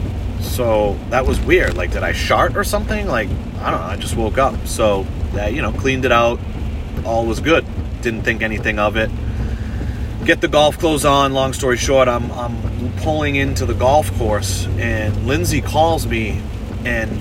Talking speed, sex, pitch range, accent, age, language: 190 wpm, male, 95-120 Hz, American, 30-49, English